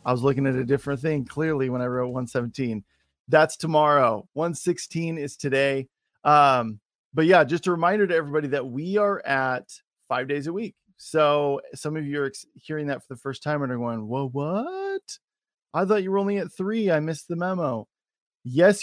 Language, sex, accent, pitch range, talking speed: English, male, American, 135-170 Hz, 195 wpm